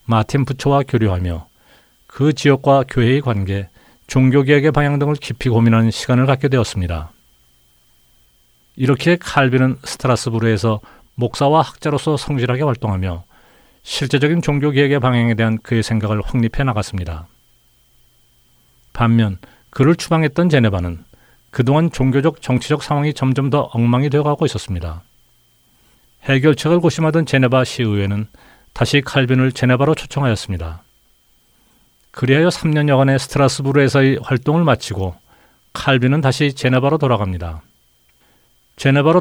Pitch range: 105-140 Hz